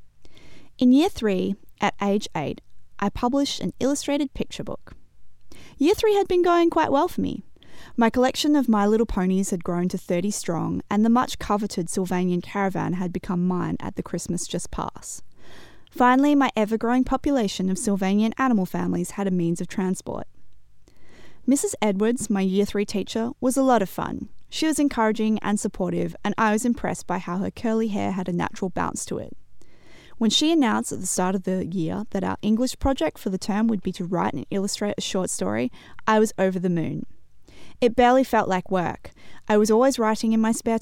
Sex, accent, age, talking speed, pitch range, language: female, Australian, 20-39, 195 wpm, 185-240 Hz, English